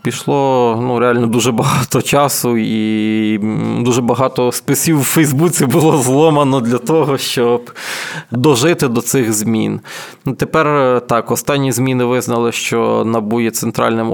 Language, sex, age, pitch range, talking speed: Ukrainian, male, 20-39, 115-140 Hz, 125 wpm